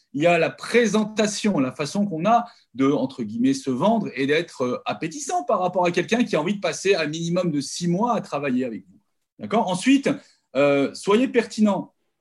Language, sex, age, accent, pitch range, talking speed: French, male, 40-59, French, 150-225 Hz, 195 wpm